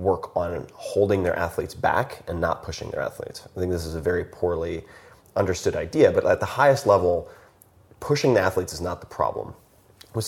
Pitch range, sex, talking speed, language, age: 90-140 Hz, male, 195 wpm, English, 30-49